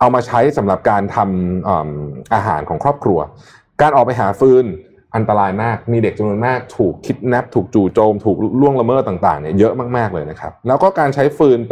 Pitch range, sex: 95-130 Hz, male